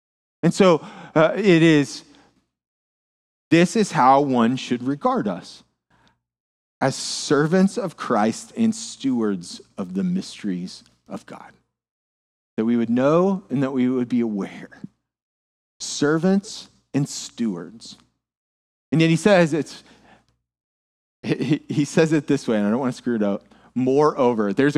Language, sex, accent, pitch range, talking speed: English, male, American, 125-205 Hz, 130 wpm